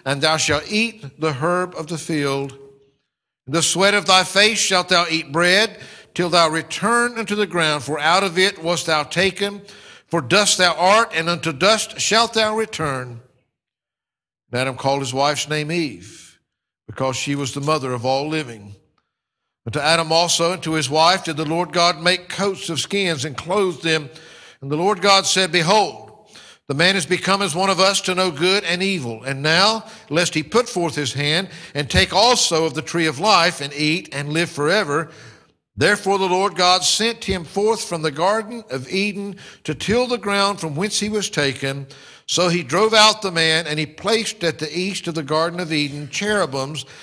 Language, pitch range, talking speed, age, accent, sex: English, 150-195 Hz, 200 wpm, 60-79, American, male